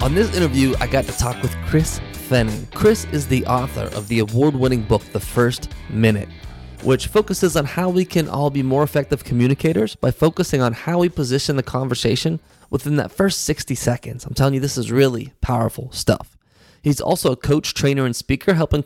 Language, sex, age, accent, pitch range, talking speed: English, male, 20-39, American, 110-145 Hz, 195 wpm